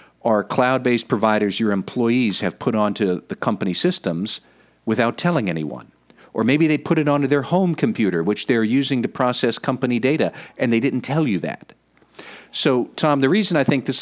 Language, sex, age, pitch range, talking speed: English, male, 50-69, 100-140 Hz, 185 wpm